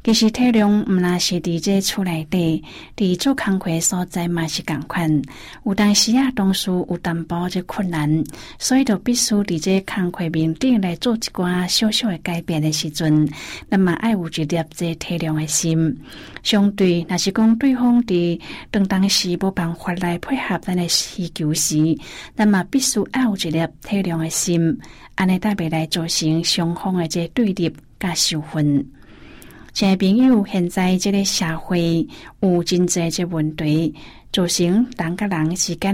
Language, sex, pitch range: Chinese, female, 160-195 Hz